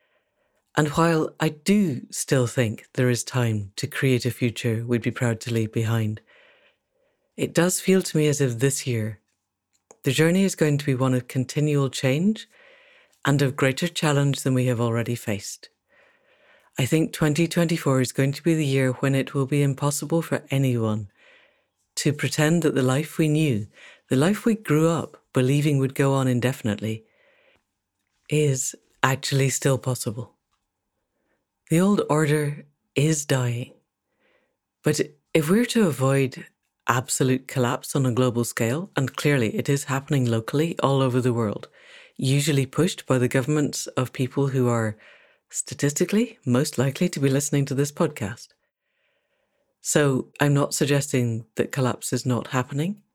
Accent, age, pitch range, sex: British, 60-79, 125-155 Hz, female